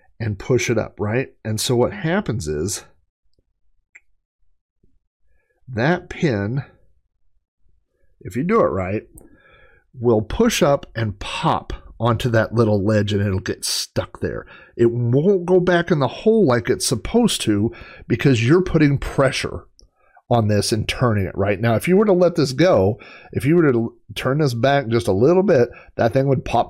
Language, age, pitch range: English, 40-59, 100-155 Hz